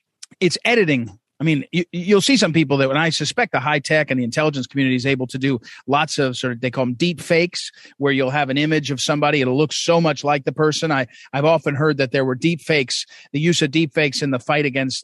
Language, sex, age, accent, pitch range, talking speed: English, male, 40-59, American, 145-220 Hz, 255 wpm